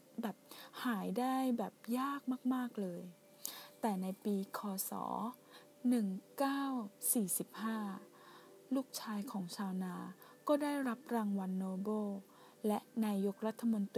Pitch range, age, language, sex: 195-240 Hz, 20-39, Thai, female